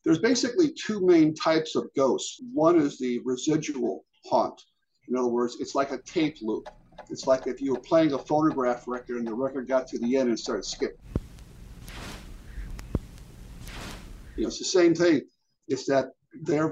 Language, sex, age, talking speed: English, male, 50-69, 170 wpm